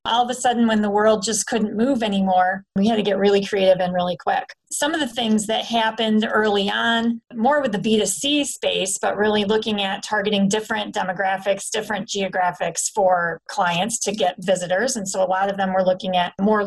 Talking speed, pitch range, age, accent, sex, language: 205 wpm, 190-225 Hz, 30-49, American, female, English